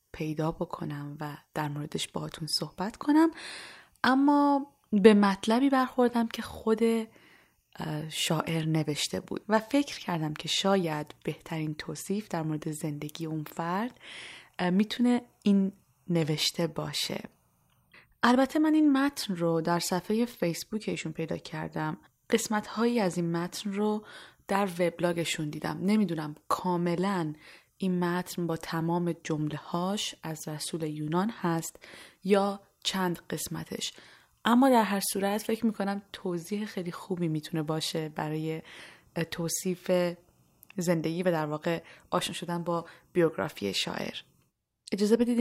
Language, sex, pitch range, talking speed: Persian, female, 160-205 Hz, 120 wpm